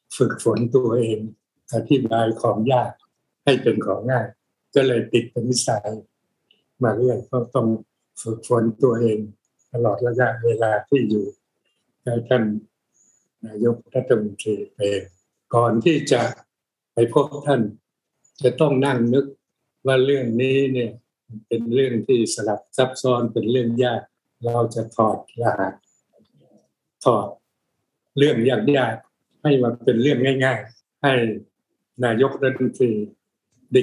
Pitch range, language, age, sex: 110-130 Hz, Thai, 60-79, male